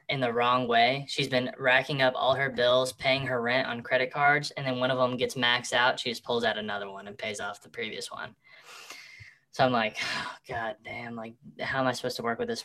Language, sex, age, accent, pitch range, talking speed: English, female, 10-29, American, 120-140 Hz, 245 wpm